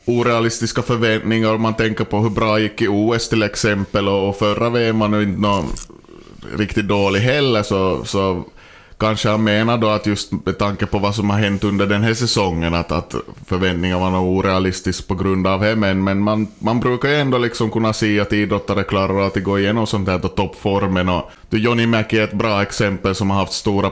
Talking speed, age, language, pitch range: 205 wpm, 20-39, Swedish, 95-115 Hz